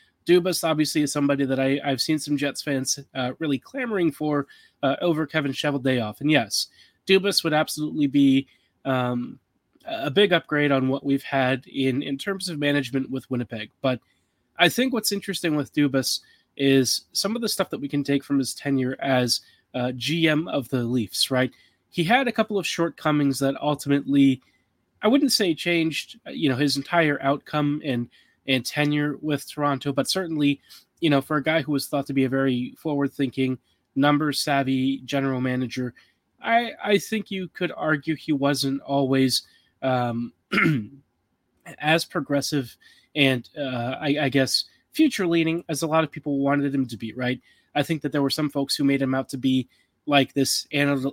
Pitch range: 135-155 Hz